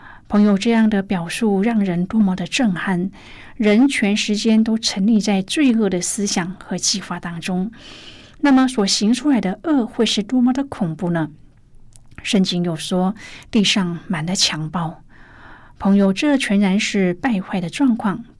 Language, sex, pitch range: Chinese, female, 180-230 Hz